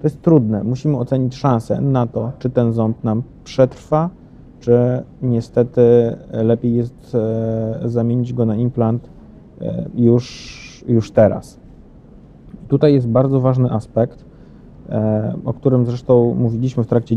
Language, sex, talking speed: Polish, male, 120 wpm